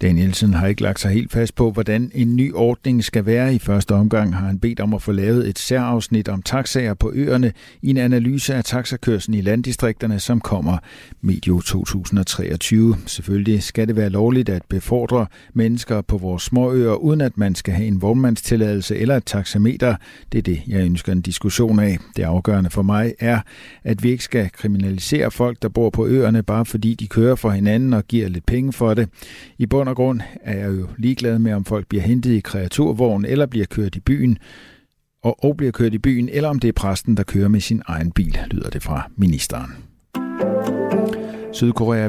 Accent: native